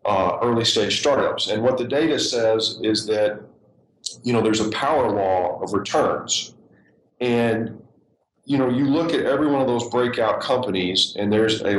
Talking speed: 175 wpm